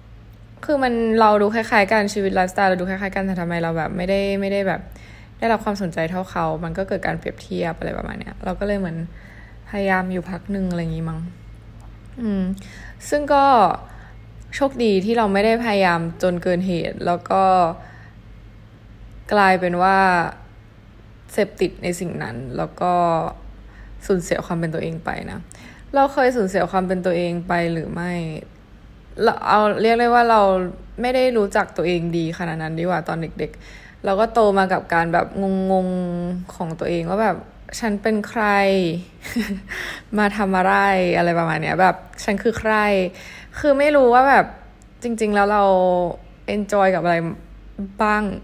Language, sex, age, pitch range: Thai, female, 20-39, 165-205 Hz